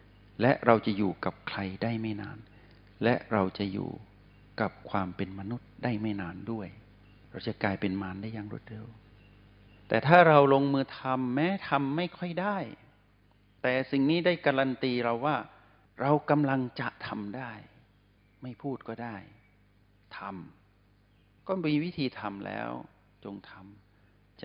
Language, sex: Thai, male